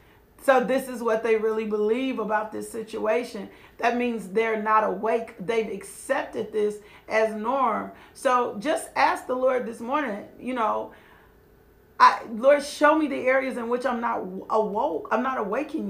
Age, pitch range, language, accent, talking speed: 40-59, 225-275 Hz, English, American, 160 wpm